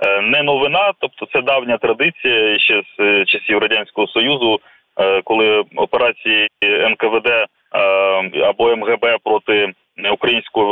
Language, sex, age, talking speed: Ukrainian, male, 20-39, 100 wpm